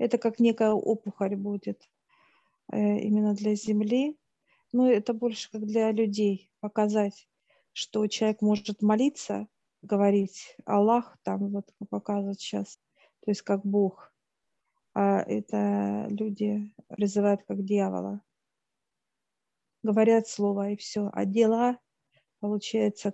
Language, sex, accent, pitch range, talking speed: Russian, female, native, 200-215 Hz, 110 wpm